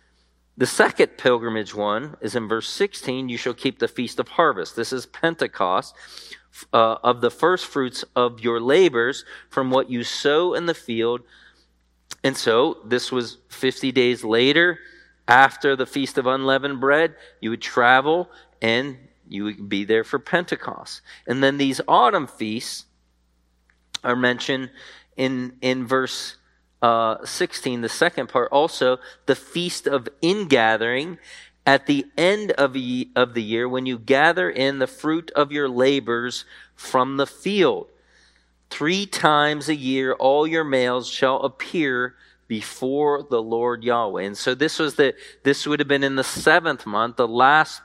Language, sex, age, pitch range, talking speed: English, male, 40-59, 115-145 Hz, 155 wpm